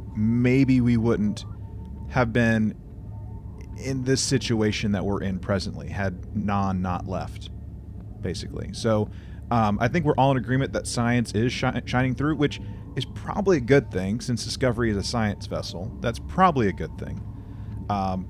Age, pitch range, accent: 30-49, 100-120 Hz, American